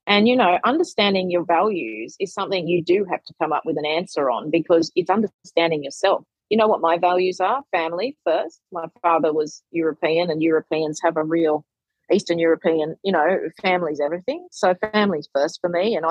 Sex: female